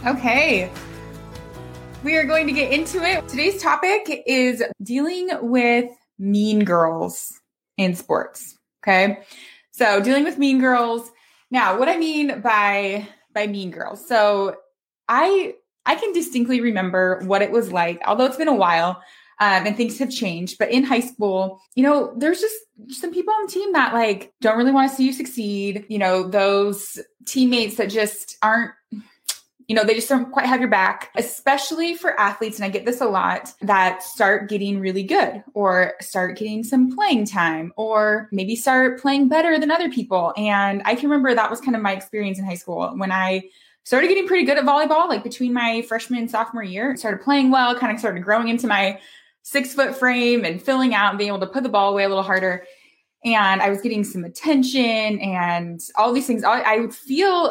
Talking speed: 195 wpm